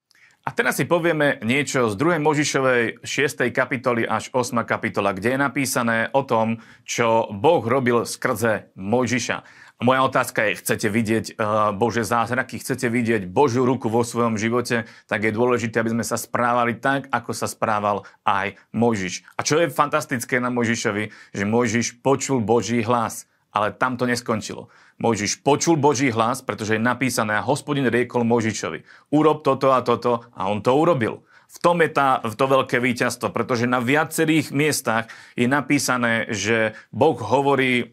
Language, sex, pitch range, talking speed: Slovak, male, 115-135 Hz, 160 wpm